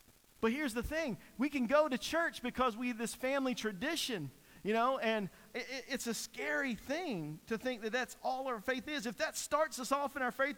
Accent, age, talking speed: American, 50-69, 215 wpm